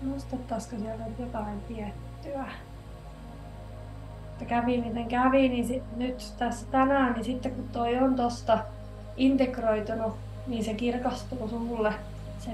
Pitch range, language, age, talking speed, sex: 190-230 Hz, Finnish, 20-39, 125 wpm, female